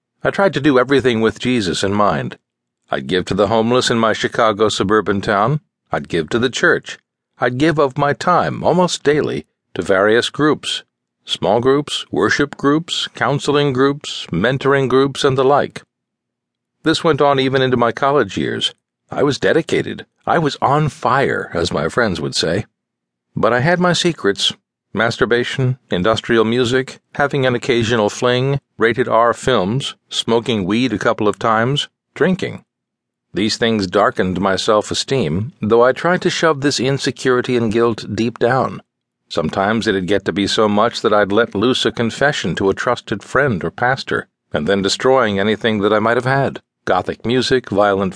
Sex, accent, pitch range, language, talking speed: male, American, 110-140 Hz, English, 165 wpm